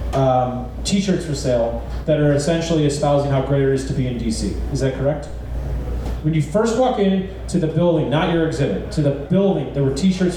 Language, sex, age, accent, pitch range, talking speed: English, male, 30-49, American, 125-170 Hz, 210 wpm